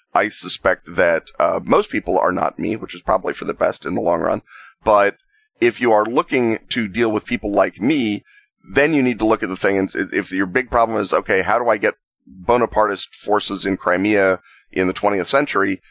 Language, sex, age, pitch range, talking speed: English, male, 30-49, 95-120 Hz, 215 wpm